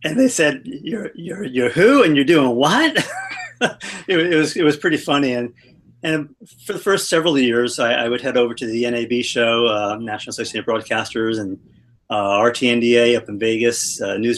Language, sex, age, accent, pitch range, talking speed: English, male, 40-59, American, 115-135 Hz, 195 wpm